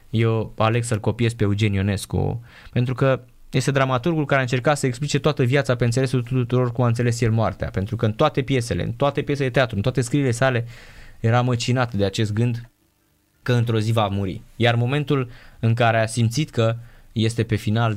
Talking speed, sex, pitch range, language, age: 195 wpm, male, 105-130 Hz, Romanian, 20-39